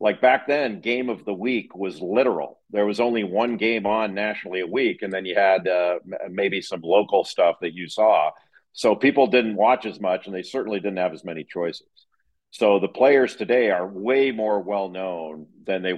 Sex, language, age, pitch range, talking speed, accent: male, English, 50-69, 90-115 Hz, 205 wpm, American